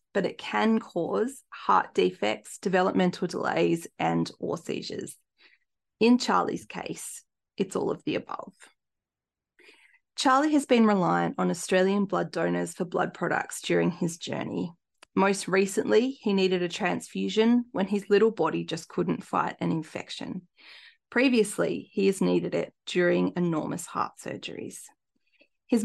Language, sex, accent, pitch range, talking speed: English, female, Australian, 175-220 Hz, 135 wpm